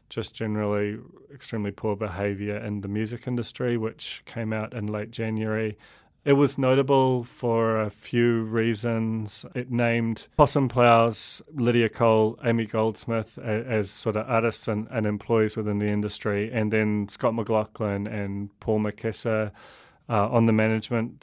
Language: English